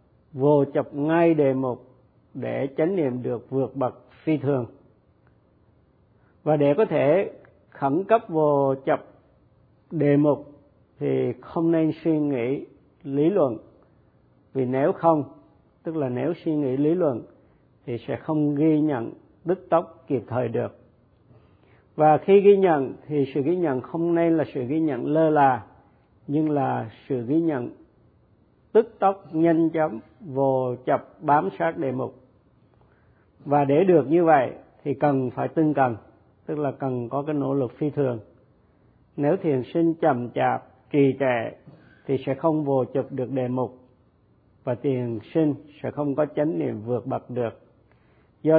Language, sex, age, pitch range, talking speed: Vietnamese, male, 50-69, 125-155 Hz, 155 wpm